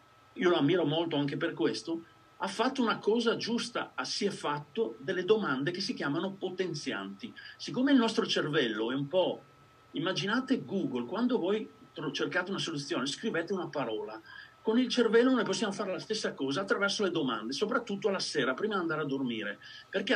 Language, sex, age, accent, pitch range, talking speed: Italian, male, 40-59, native, 160-245 Hz, 180 wpm